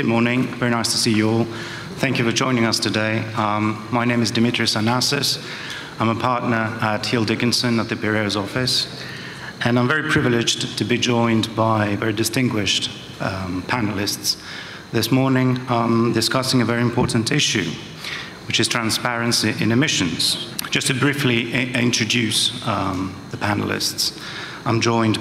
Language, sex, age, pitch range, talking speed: English, male, 30-49, 105-125 Hz, 150 wpm